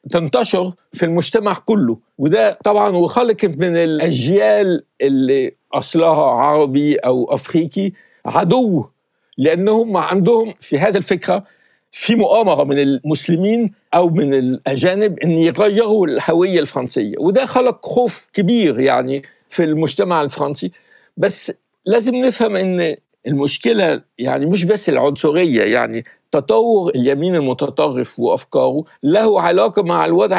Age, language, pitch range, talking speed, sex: 60-79, Arabic, 150-210 Hz, 115 wpm, male